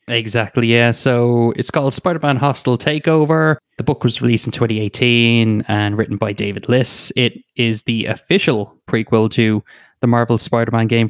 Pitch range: 115-135 Hz